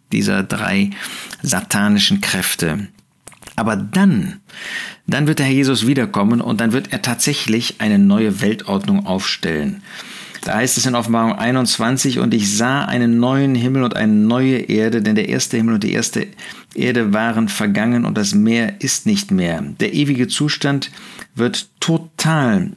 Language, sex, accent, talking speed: German, male, German, 155 wpm